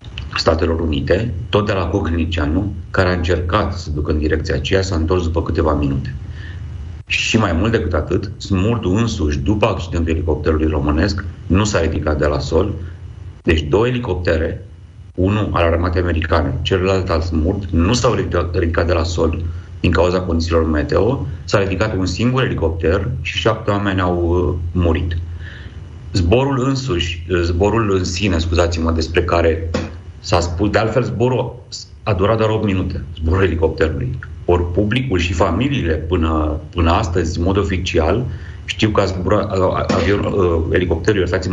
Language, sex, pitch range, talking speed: Romanian, male, 85-100 Hz, 150 wpm